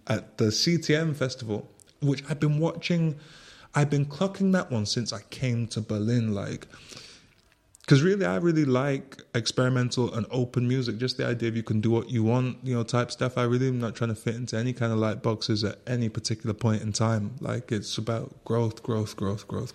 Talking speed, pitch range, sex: 205 wpm, 110-125 Hz, male